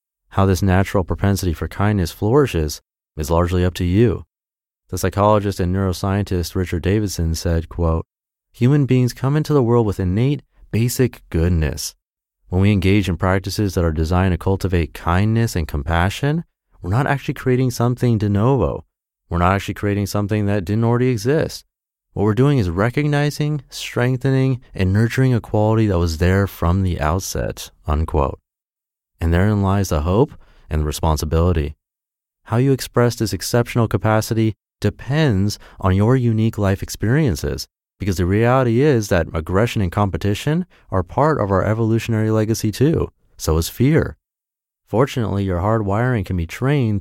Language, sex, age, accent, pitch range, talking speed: English, male, 30-49, American, 90-120 Hz, 155 wpm